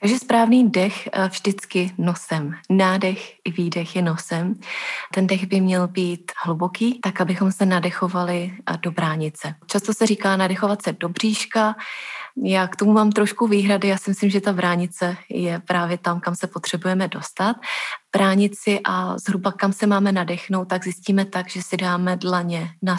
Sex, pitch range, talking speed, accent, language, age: female, 175-200 Hz, 165 wpm, native, Czech, 30-49